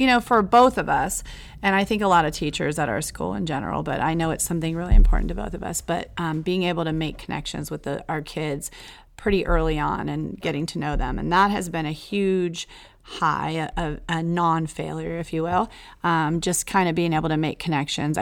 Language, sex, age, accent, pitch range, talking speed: English, female, 30-49, American, 155-185 Hz, 225 wpm